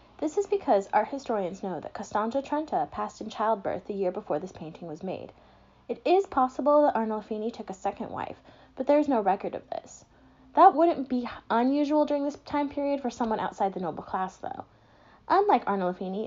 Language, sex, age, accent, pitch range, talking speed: English, female, 10-29, American, 195-280 Hz, 190 wpm